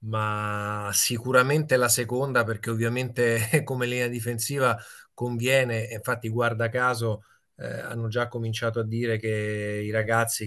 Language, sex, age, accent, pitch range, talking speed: Italian, male, 30-49, native, 110-120 Hz, 125 wpm